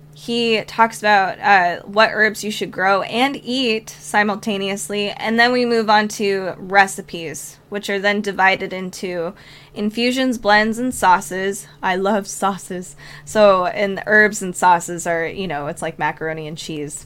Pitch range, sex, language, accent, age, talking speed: 175-230 Hz, female, English, American, 10-29, 160 wpm